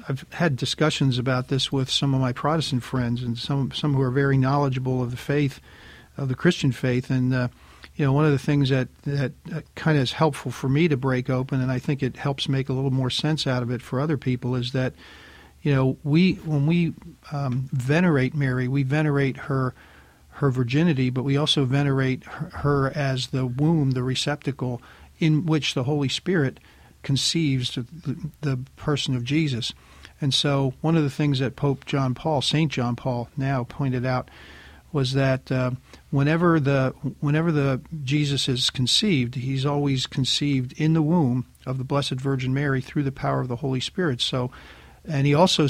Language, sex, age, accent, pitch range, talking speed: English, male, 50-69, American, 130-150 Hz, 190 wpm